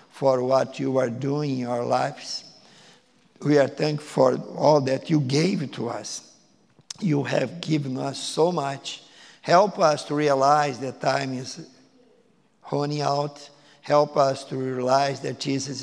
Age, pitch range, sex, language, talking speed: 50-69, 135-190 Hz, male, English, 150 wpm